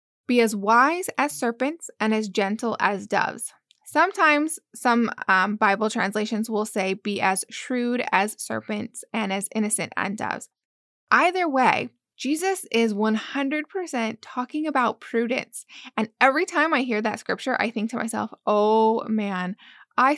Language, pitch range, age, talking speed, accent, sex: English, 215-260 Hz, 10-29, 145 wpm, American, female